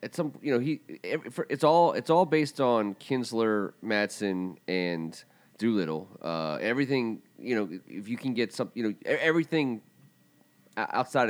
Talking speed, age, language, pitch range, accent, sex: 150 wpm, 30-49, English, 100-130 Hz, American, male